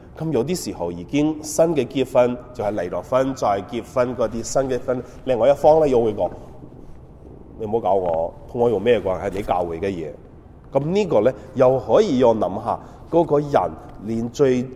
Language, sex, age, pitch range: Chinese, male, 30-49, 100-140 Hz